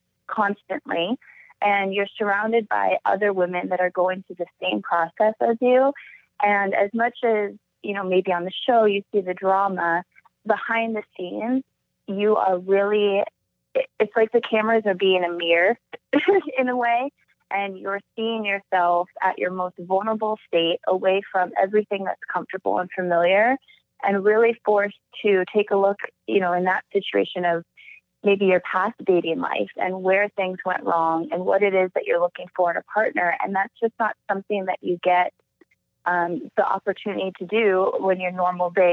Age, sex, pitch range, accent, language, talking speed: 20-39, female, 180-215 Hz, American, English, 175 wpm